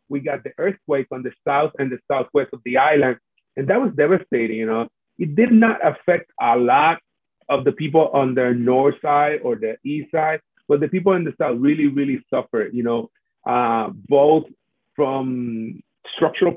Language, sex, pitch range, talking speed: English, male, 130-180 Hz, 185 wpm